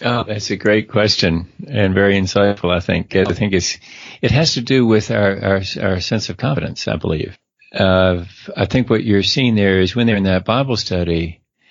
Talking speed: 205 wpm